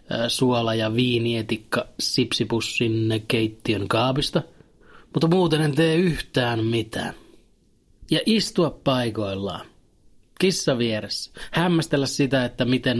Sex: male